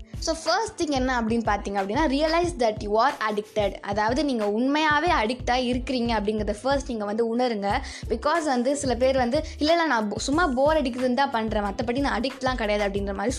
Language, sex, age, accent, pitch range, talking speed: Tamil, female, 20-39, native, 220-290 Hz, 180 wpm